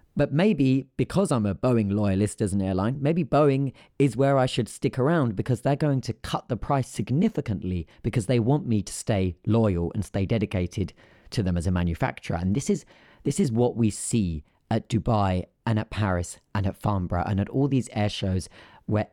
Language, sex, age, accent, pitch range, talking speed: English, male, 30-49, British, 100-125 Hz, 200 wpm